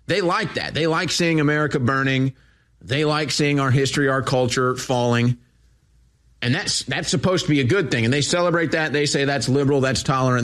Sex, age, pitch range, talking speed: male, 30-49, 125-165 Hz, 200 wpm